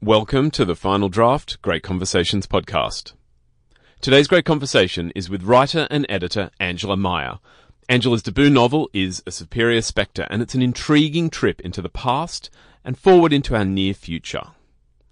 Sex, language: male, English